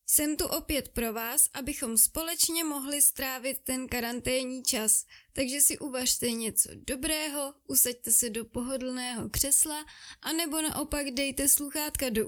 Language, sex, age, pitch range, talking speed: Czech, female, 20-39, 245-285 Hz, 135 wpm